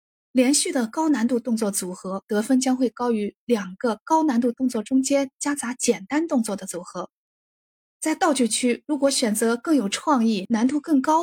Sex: female